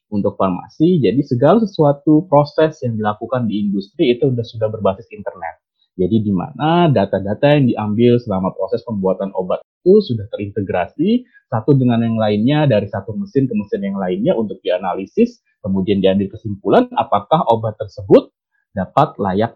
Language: Indonesian